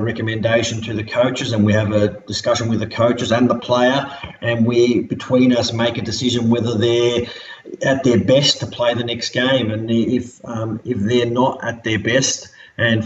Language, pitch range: English, 105-120 Hz